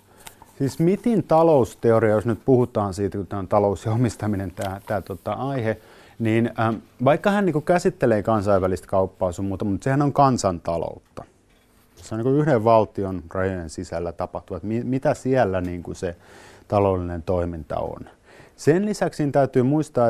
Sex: male